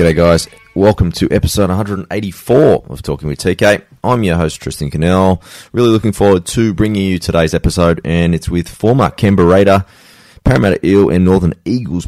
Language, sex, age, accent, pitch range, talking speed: English, male, 20-39, Australian, 85-100 Hz, 170 wpm